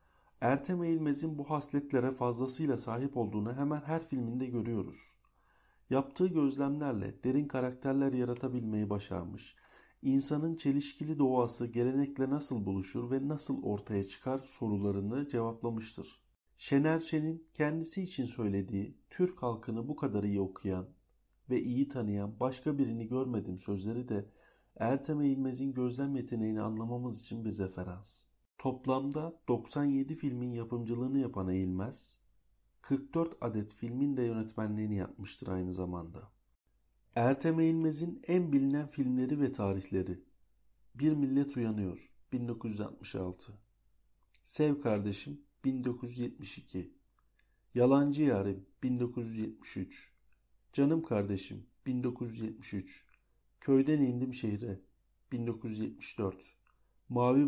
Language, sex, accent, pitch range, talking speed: Turkish, male, native, 105-140 Hz, 100 wpm